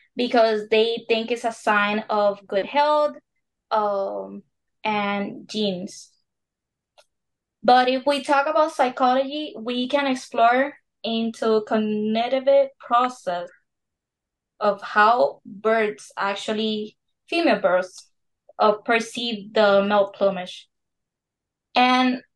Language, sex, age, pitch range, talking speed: English, female, 20-39, 210-250 Hz, 100 wpm